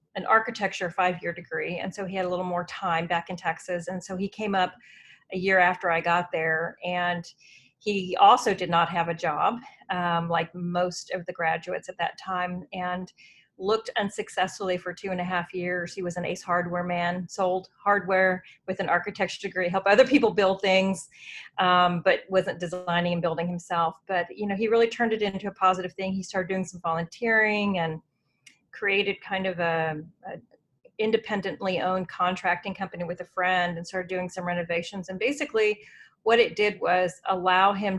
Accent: American